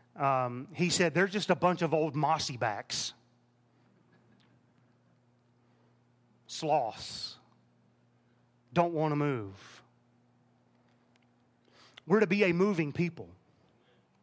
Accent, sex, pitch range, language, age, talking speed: American, male, 135-220 Hz, English, 40-59, 95 wpm